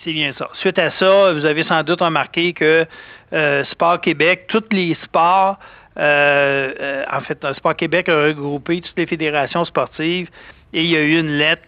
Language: French